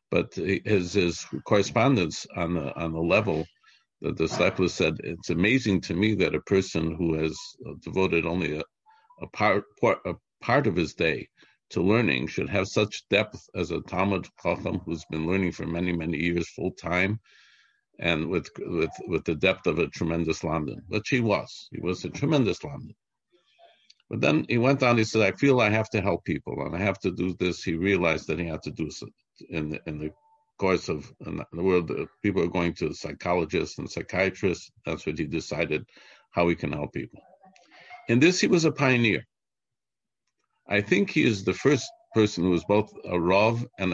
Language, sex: English, male